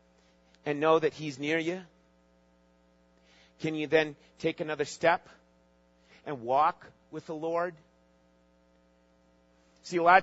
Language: English